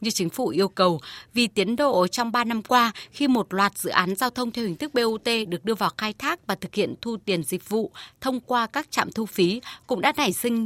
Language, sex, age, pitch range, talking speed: Vietnamese, female, 20-39, 190-245 Hz, 255 wpm